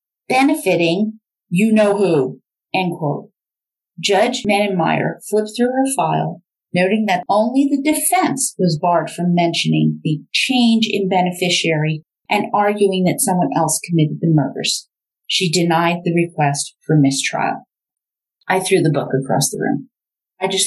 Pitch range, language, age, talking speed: 170-230 Hz, English, 40-59, 140 wpm